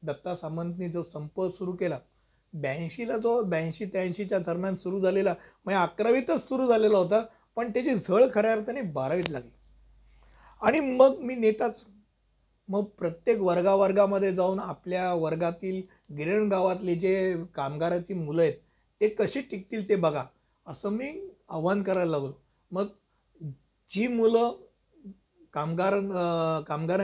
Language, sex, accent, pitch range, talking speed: Hindi, male, native, 170-215 Hz, 115 wpm